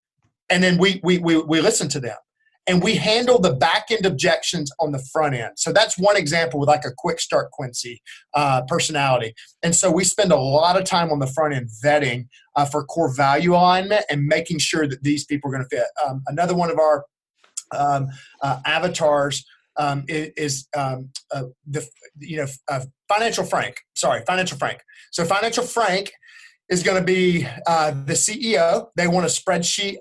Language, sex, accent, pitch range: English, male, American, 145-185 Hz